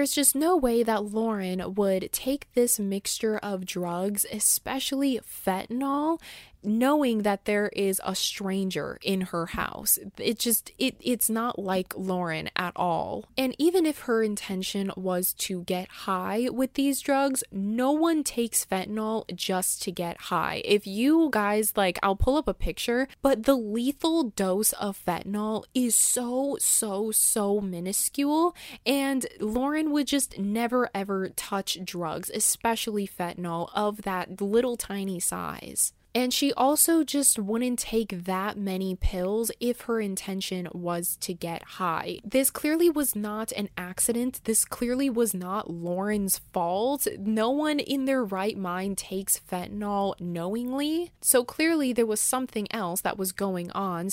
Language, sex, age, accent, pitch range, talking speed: English, female, 20-39, American, 190-250 Hz, 150 wpm